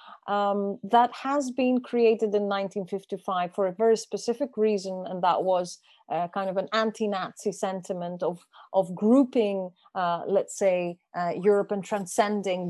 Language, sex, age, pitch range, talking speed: English, female, 30-49, 190-225 Hz, 145 wpm